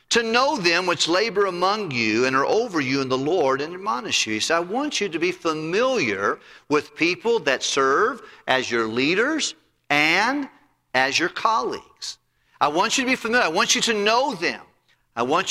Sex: male